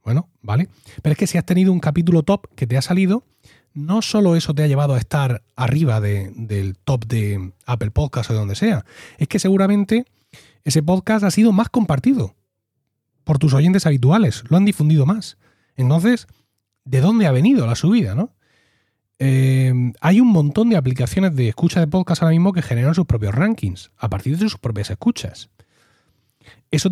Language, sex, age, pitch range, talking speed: Spanish, male, 30-49, 115-175 Hz, 185 wpm